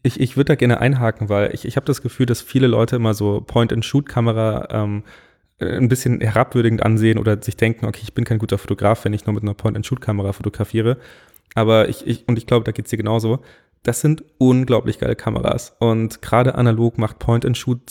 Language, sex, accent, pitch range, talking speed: German, male, German, 110-130 Hz, 200 wpm